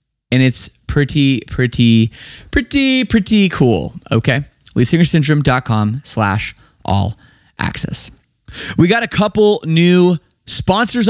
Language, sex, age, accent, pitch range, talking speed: English, male, 20-39, American, 130-185 Hz, 110 wpm